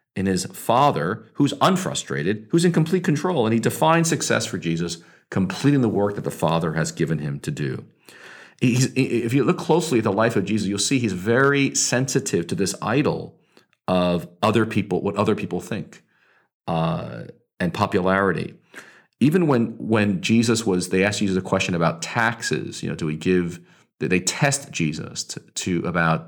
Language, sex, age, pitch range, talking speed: English, male, 40-59, 95-135 Hz, 175 wpm